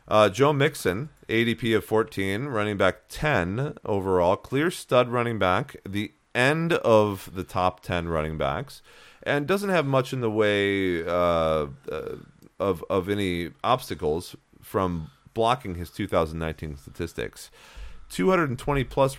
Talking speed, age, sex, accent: 130 wpm, 30-49, male, American